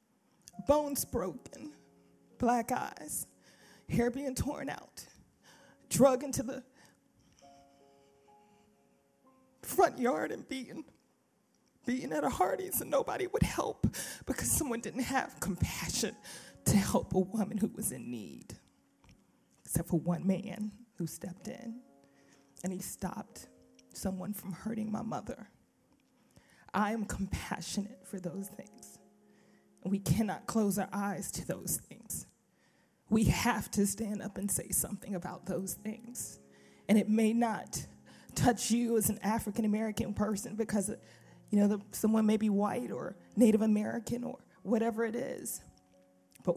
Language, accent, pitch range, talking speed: English, American, 185-235 Hz, 130 wpm